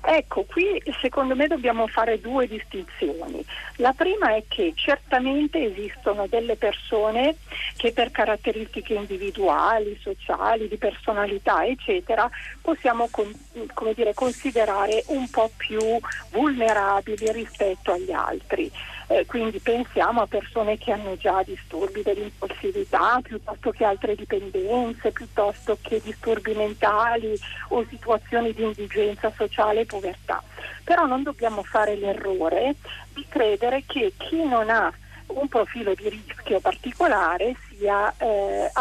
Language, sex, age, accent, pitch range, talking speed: Italian, female, 50-69, native, 210-265 Hz, 120 wpm